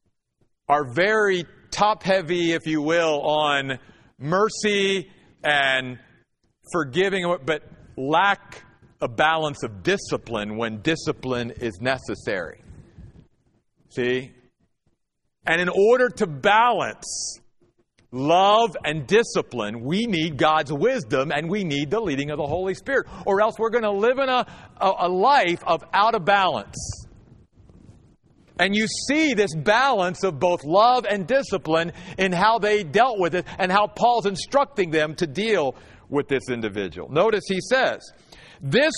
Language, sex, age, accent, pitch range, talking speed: English, male, 50-69, American, 150-215 Hz, 130 wpm